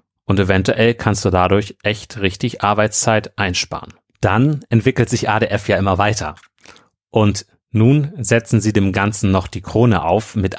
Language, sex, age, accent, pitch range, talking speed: German, male, 30-49, German, 95-115 Hz, 155 wpm